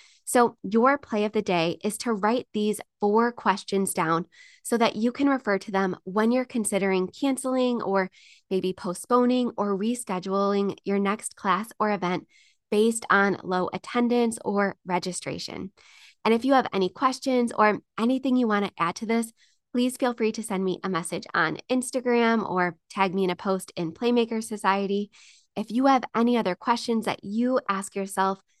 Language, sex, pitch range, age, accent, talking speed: English, female, 190-230 Hz, 20-39, American, 175 wpm